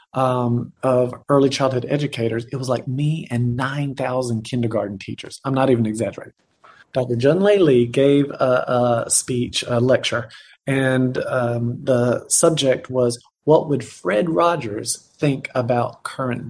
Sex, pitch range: male, 120-155 Hz